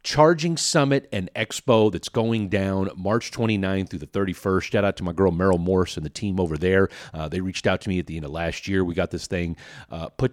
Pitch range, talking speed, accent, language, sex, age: 90-115 Hz, 245 wpm, American, English, male, 40-59